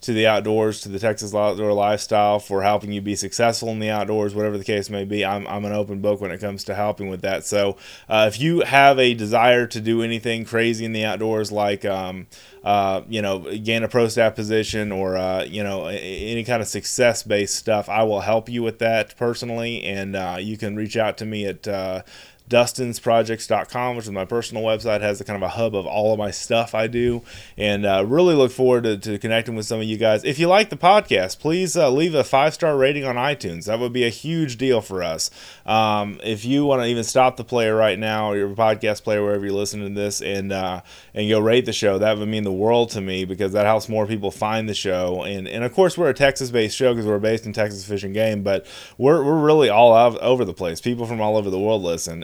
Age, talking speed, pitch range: 20-39, 240 wpm, 100-115 Hz